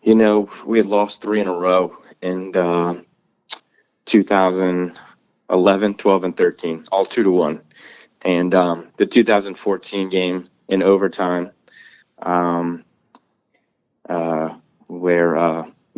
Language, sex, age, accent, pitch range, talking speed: English, male, 20-39, American, 90-100 Hz, 105 wpm